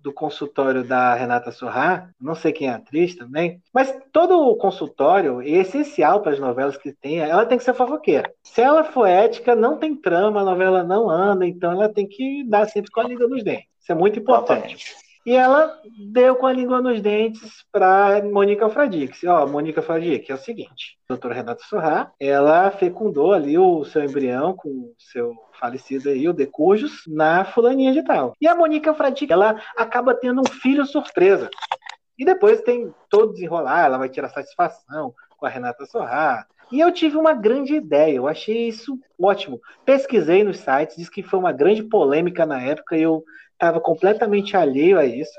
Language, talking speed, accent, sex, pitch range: Portuguese, 190 wpm, Brazilian, male, 160-265 Hz